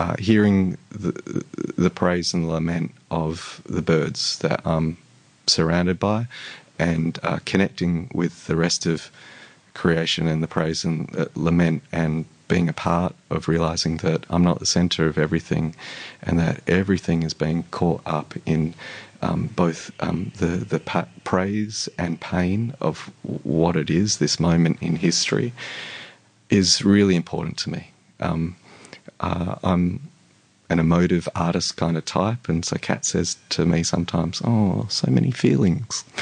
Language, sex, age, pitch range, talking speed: English, male, 30-49, 80-95 Hz, 145 wpm